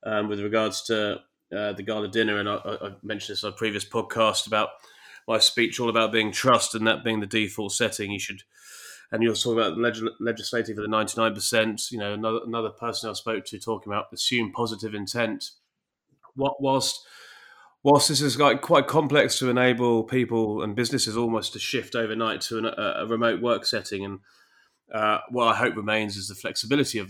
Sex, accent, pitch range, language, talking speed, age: male, British, 105-125 Hz, English, 190 wpm, 30-49